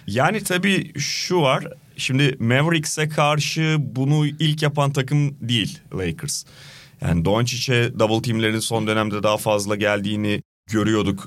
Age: 30-49